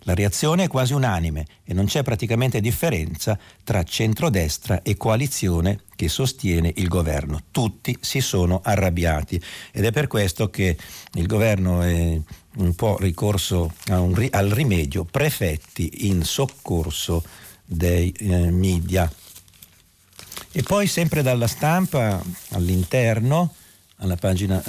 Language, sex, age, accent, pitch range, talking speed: Italian, male, 50-69, native, 90-115 Hz, 125 wpm